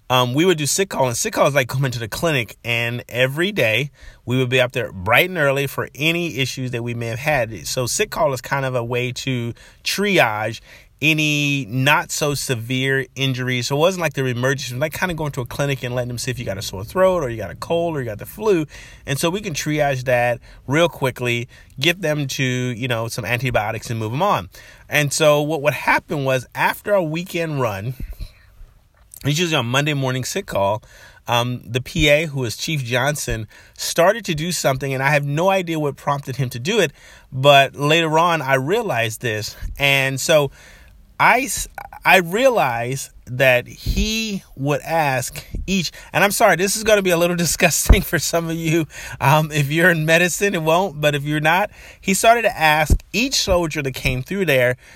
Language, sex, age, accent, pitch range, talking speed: English, male, 30-49, American, 125-165 Hz, 210 wpm